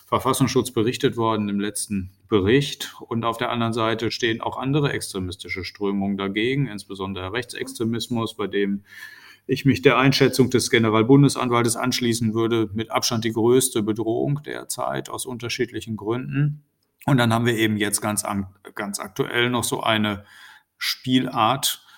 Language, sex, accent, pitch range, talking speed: German, male, German, 105-130 Hz, 140 wpm